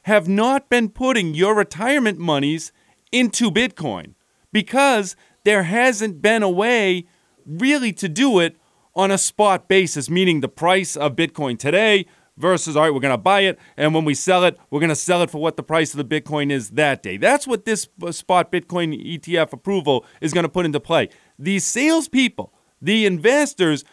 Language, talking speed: English, 185 wpm